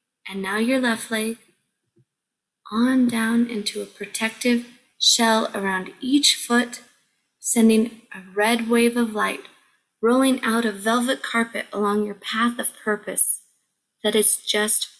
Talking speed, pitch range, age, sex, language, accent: 130 wpm, 210-240 Hz, 20-39, female, English, American